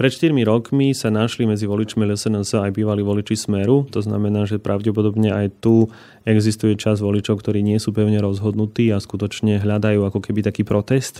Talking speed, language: 175 wpm, Slovak